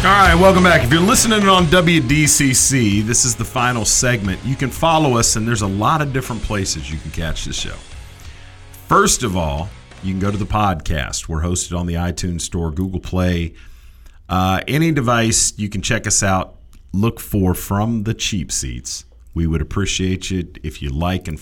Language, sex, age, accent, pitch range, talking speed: English, male, 40-59, American, 85-120 Hz, 195 wpm